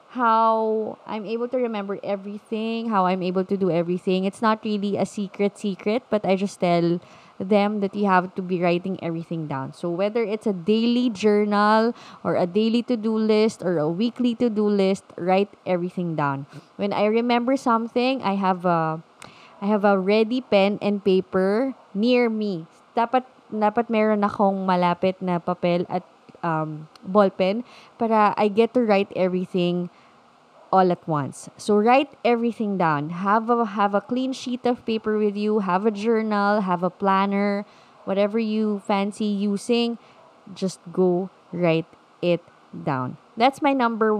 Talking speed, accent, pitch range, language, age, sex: 150 wpm, Filipino, 185-230 Hz, English, 20-39, female